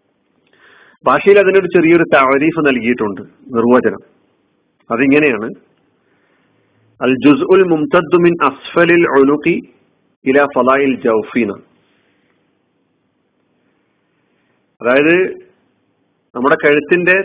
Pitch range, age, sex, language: 130-165 Hz, 40-59, male, Malayalam